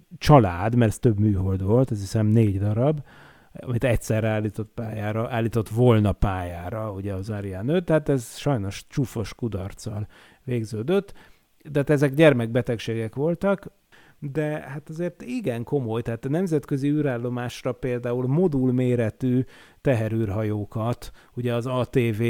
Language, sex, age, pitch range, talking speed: Hungarian, male, 30-49, 115-145 Hz, 125 wpm